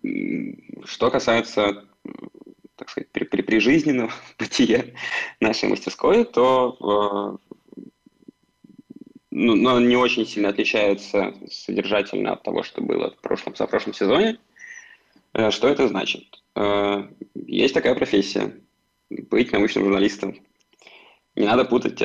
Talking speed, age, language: 115 wpm, 20-39, Russian